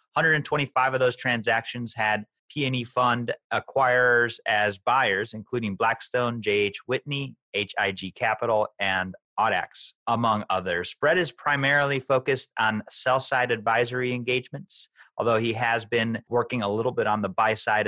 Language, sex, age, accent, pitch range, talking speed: English, male, 30-49, American, 105-125 Hz, 140 wpm